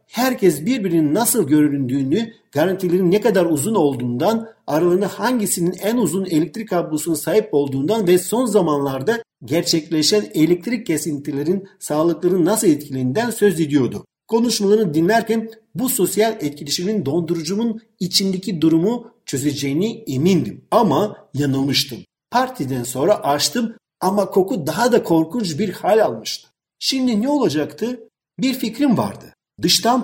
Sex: male